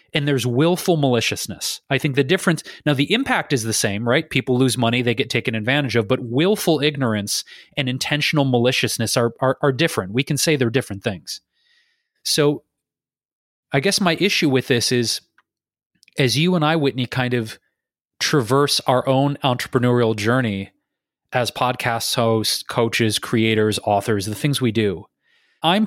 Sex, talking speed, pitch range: male, 160 wpm, 120-150 Hz